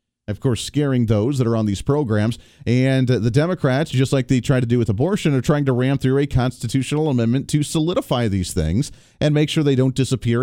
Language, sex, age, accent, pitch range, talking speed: English, male, 40-59, American, 120-160 Hz, 220 wpm